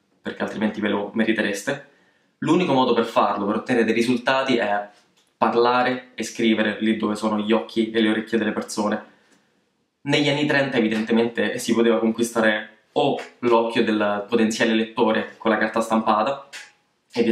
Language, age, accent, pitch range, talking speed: Italian, 20-39, native, 110-120 Hz, 155 wpm